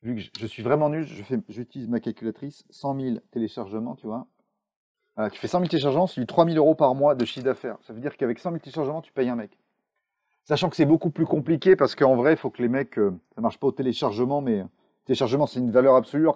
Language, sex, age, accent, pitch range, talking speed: French, male, 30-49, French, 125-165 Hz, 255 wpm